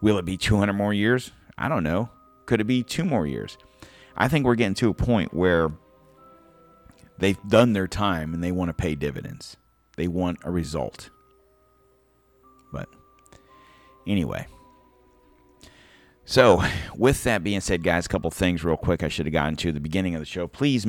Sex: male